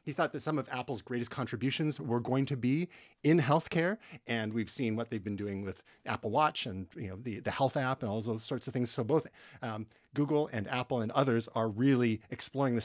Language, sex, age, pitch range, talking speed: English, male, 30-49, 110-150 Hz, 230 wpm